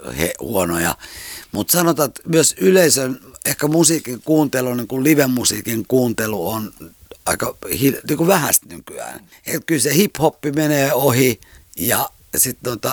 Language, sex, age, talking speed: Finnish, male, 60-79, 125 wpm